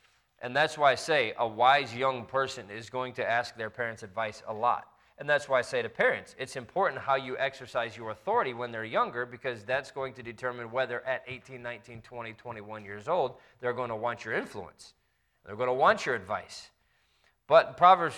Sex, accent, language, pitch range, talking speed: male, American, English, 115-140 Hz, 205 wpm